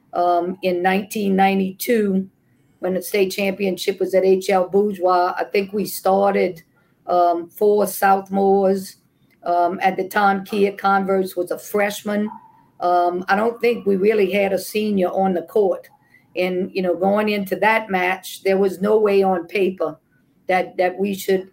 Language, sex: English, female